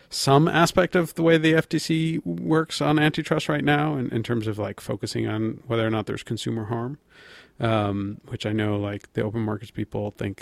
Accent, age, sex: American, 40-59, male